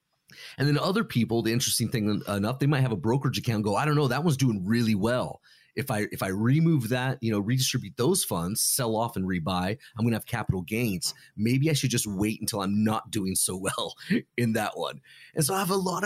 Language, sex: English, male